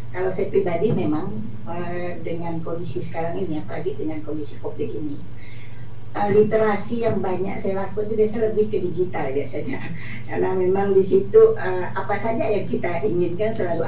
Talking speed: 145 wpm